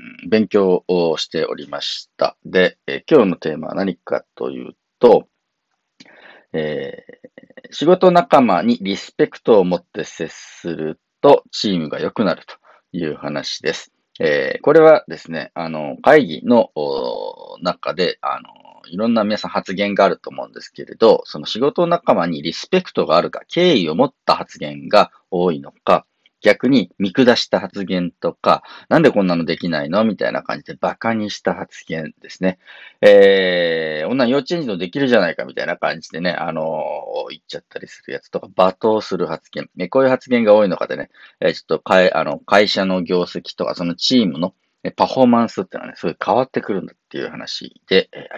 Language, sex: Japanese, male